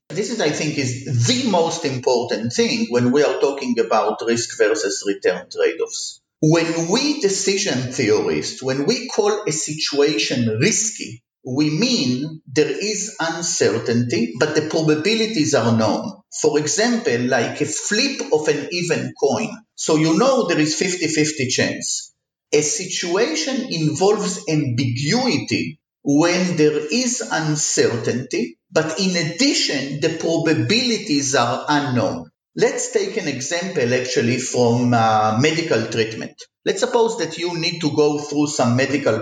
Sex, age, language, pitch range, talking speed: male, 50-69, English, 140-230 Hz, 135 wpm